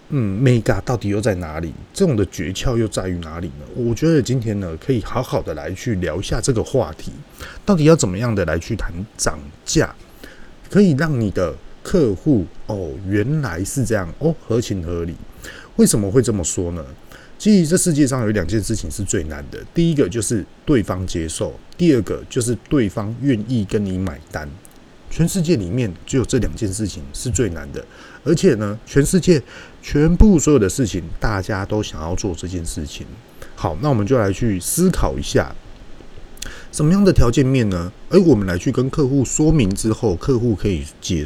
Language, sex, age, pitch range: Chinese, male, 30-49, 95-135 Hz